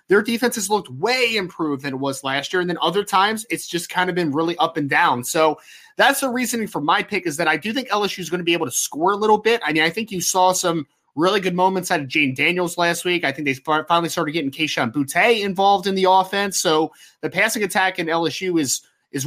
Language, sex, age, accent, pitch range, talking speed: English, male, 20-39, American, 160-195 Hz, 260 wpm